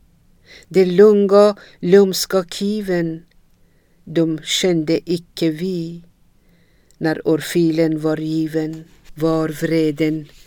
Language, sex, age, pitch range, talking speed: Swedish, female, 50-69, 160-180 Hz, 80 wpm